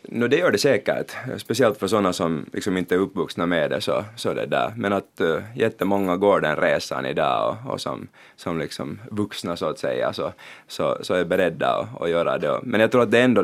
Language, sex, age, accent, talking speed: Finnish, male, 20-39, native, 220 wpm